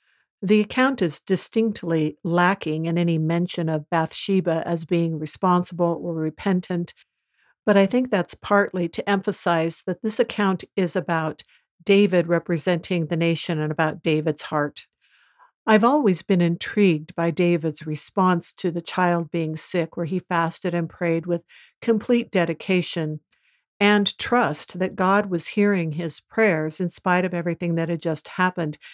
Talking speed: 145 wpm